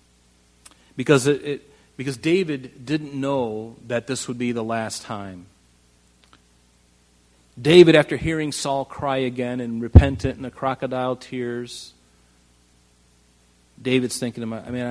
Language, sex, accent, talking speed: English, male, American, 120 wpm